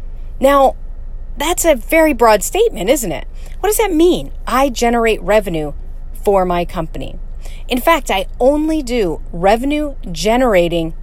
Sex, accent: female, American